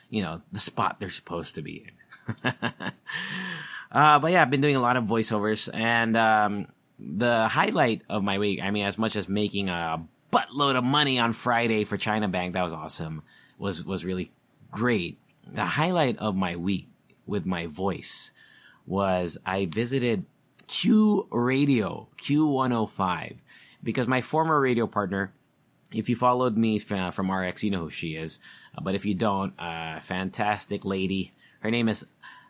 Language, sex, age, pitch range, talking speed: English, male, 20-39, 95-125 Hz, 160 wpm